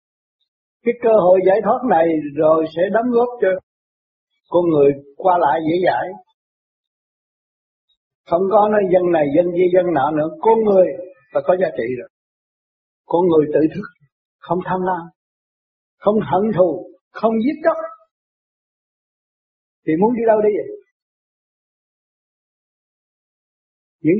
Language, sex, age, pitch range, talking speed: Vietnamese, male, 60-79, 160-210 Hz, 135 wpm